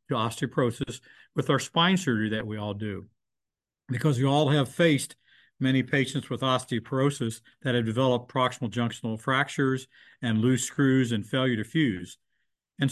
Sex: male